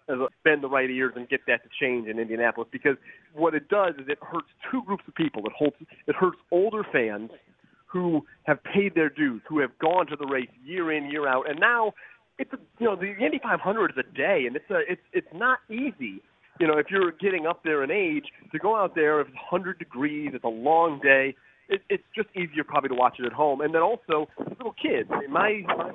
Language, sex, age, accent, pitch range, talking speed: English, male, 30-49, American, 135-190 Hz, 225 wpm